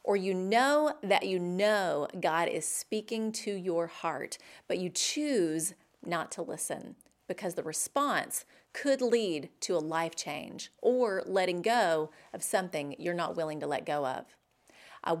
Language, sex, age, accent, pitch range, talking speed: English, female, 30-49, American, 175-235 Hz, 160 wpm